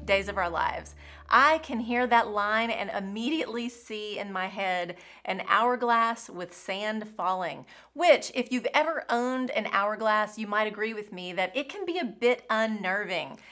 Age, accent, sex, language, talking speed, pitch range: 30-49, American, female, English, 175 wpm, 190-245 Hz